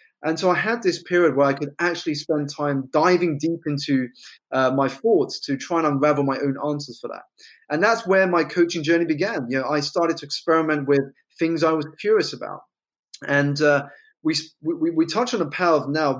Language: English